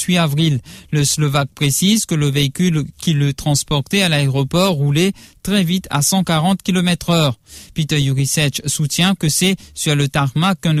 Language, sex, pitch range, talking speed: English, male, 145-180 Hz, 160 wpm